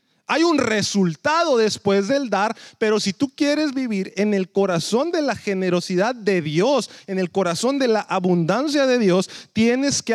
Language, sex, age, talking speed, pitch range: English, male, 30-49, 170 wpm, 160-230 Hz